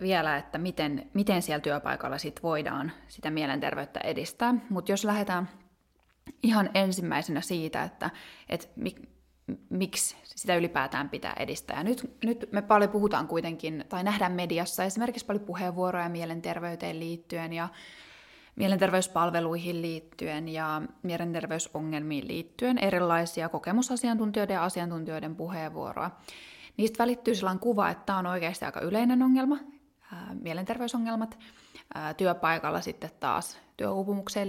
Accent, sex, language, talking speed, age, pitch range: native, female, Finnish, 115 wpm, 20-39, 165-210 Hz